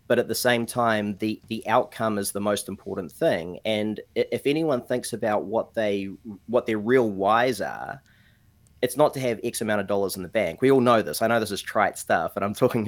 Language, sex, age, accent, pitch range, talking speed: English, male, 30-49, Australian, 100-120 Hz, 230 wpm